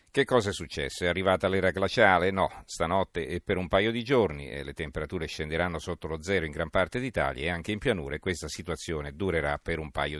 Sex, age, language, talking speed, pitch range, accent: male, 50-69, Italian, 225 wpm, 80-95 Hz, native